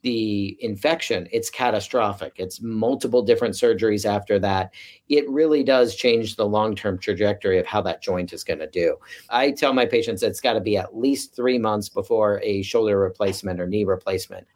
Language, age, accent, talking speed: English, 40-59, American, 180 wpm